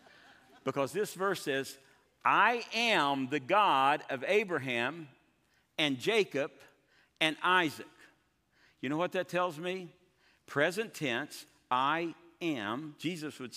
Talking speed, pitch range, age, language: 115 wpm, 125-170 Hz, 60-79, English